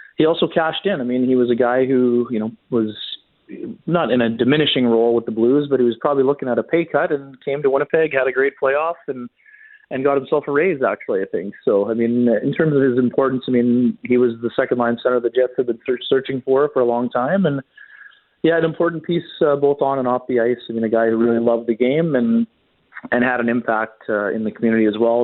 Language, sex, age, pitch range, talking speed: English, male, 30-49, 115-135 Hz, 255 wpm